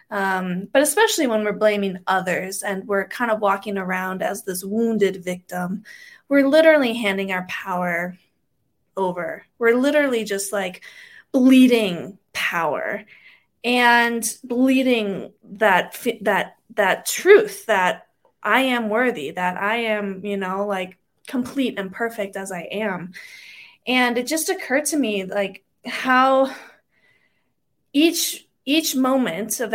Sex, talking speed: female, 125 wpm